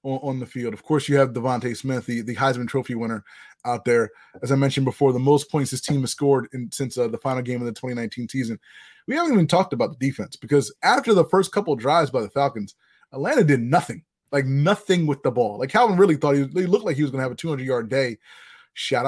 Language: English